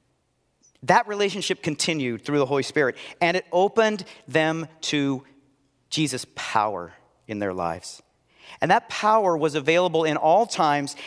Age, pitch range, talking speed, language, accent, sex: 40-59, 135-185 Hz, 135 wpm, English, American, male